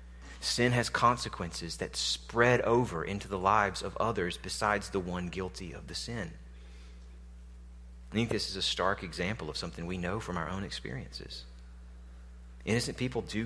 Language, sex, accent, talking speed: English, male, American, 160 wpm